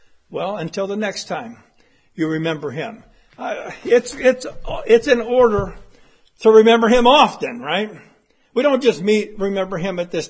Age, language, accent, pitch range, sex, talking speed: 60-79, English, American, 195-230 Hz, male, 150 wpm